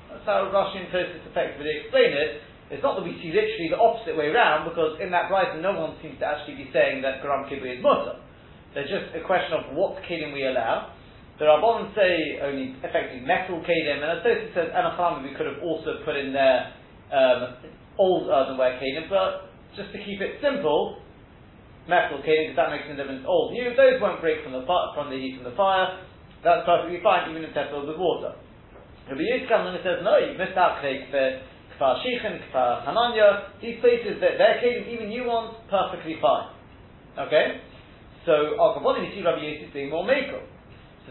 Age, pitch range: 40-59, 150-230 Hz